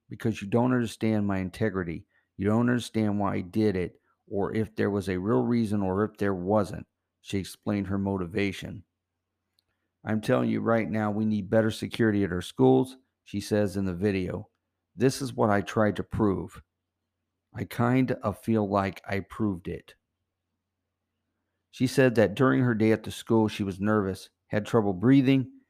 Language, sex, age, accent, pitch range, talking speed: English, male, 50-69, American, 95-110 Hz, 175 wpm